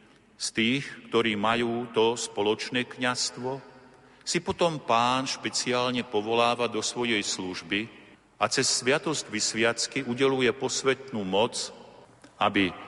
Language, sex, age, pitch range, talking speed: Slovak, male, 50-69, 85-110 Hz, 105 wpm